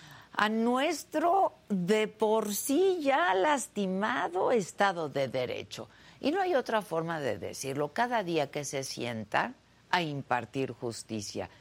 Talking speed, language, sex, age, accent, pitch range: 130 wpm, Spanish, female, 50-69, Mexican, 140-225 Hz